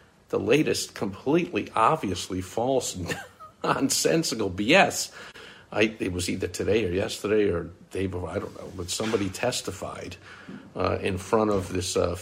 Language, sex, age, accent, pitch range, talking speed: English, male, 50-69, American, 95-115 Hz, 140 wpm